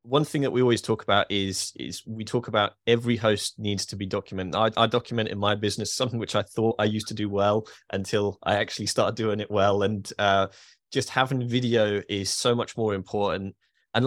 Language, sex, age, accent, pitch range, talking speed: English, male, 20-39, British, 100-120 Hz, 220 wpm